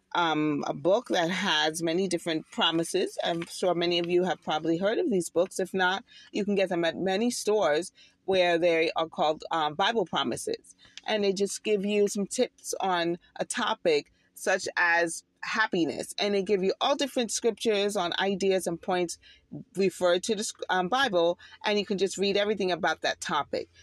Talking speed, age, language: 185 wpm, 30-49, English